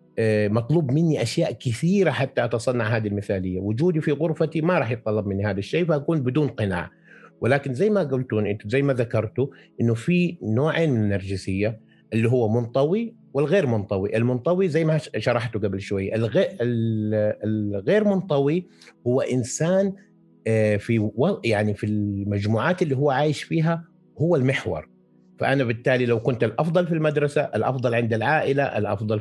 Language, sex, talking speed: Arabic, male, 145 wpm